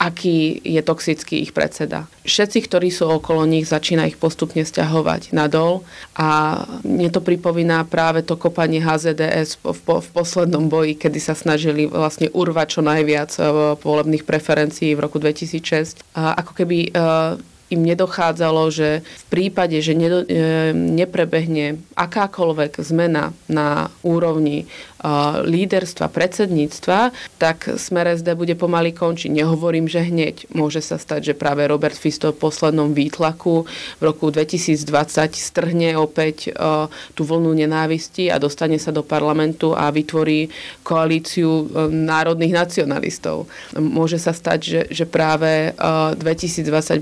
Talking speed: 125 wpm